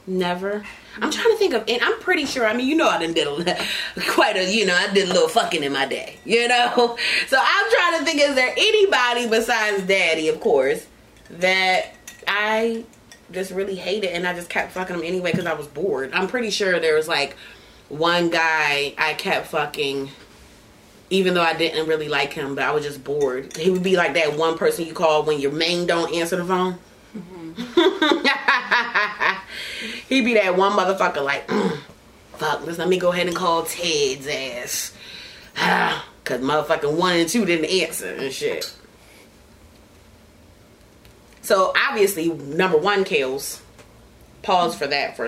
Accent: American